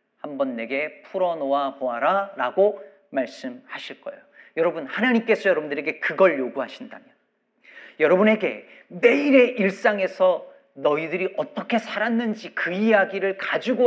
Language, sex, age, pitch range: Korean, male, 40-59, 170-250 Hz